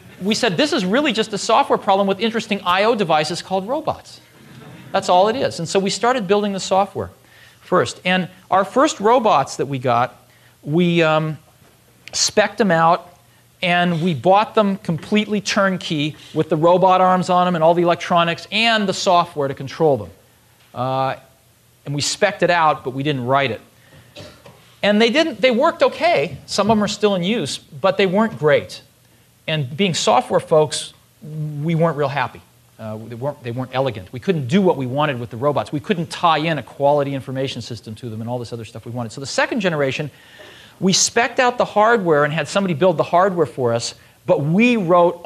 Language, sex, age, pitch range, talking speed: English, male, 40-59, 140-195 Hz, 195 wpm